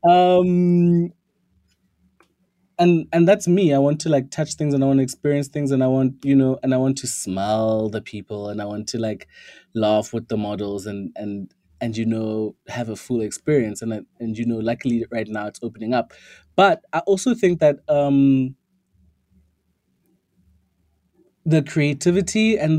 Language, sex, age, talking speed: English, male, 20-39, 175 wpm